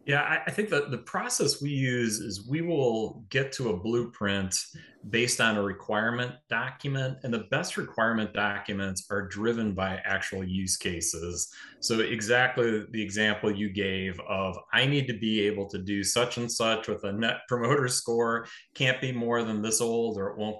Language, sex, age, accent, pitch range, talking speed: English, male, 30-49, American, 105-125 Hz, 180 wpm